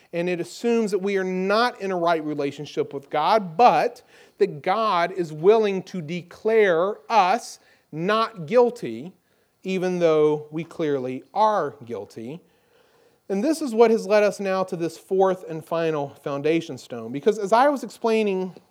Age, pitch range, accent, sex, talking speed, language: 40-59, 165-215 Hz, American, male, 155 wpm, English